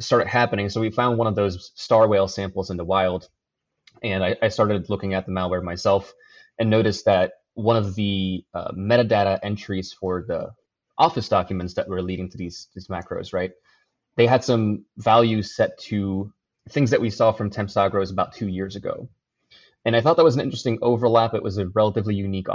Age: 20-39